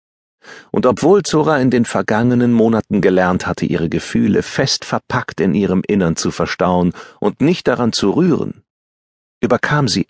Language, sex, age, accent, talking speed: German, male, 40-59, German, 150 wpm